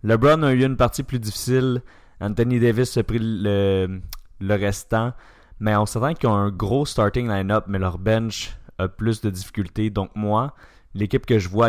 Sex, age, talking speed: male, 20-39, 185 wpm